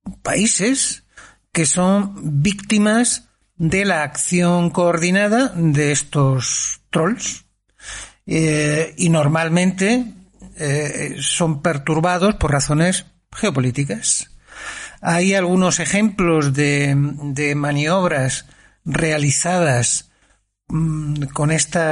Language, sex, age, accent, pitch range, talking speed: Spanish, male, 60-79, Spanish, 150-185 Hz, 80 wpm